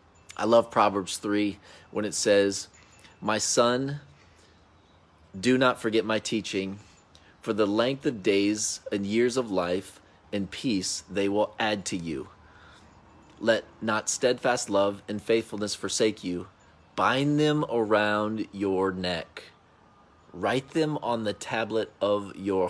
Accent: American